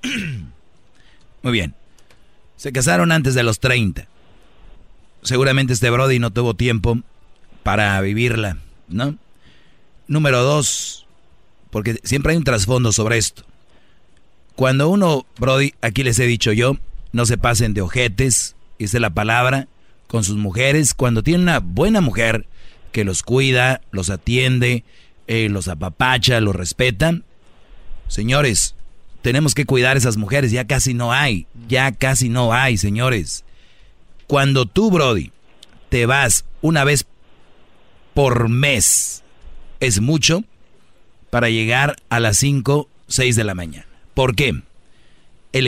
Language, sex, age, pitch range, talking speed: Spanish, male, 40-59, 105-135 Hz, 130 wpm